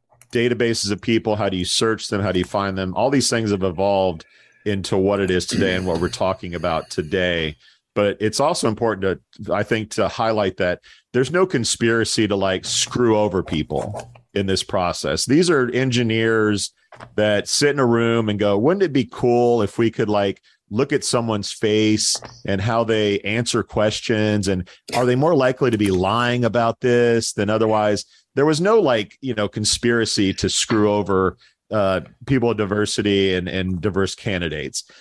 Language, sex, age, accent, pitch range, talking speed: English, male, 40-59, American, 95-115 Hz, 185 wpm